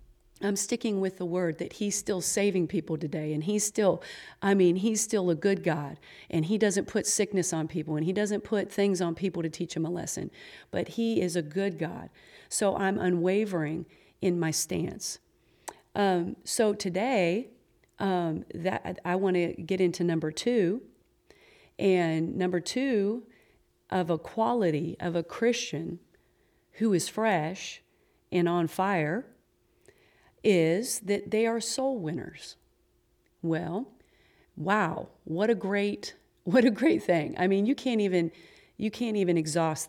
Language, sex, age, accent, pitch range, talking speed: English, female, 40-59, American, 170-200 Hz, 155 wpm